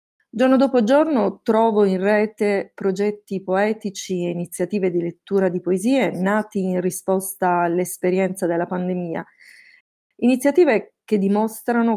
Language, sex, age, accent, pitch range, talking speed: Italian, female, 30-49, native, 185-235 Hz, 115 wpm